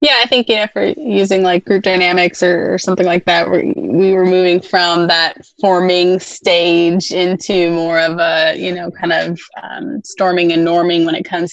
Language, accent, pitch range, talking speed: English, American, 175-195 Hz, 200 wpm